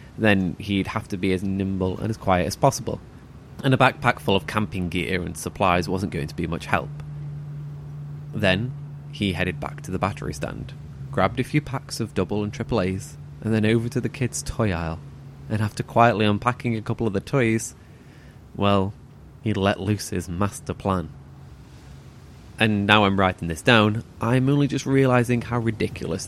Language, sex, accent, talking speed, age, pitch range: English, male, British, 185 wpm, 20-39, 95-125 Hz